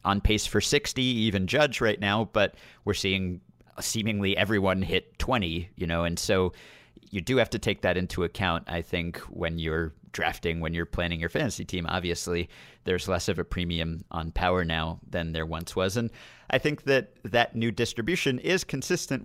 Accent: American